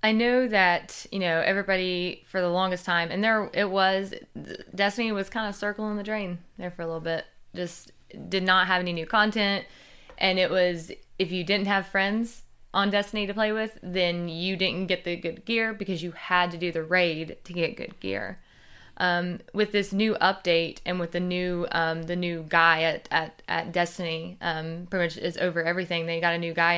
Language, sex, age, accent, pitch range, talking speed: English, female, 20-39, American, 170-195 Hz, 205 wpm